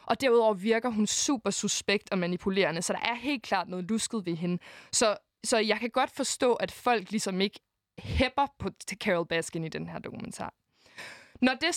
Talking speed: 190 wpm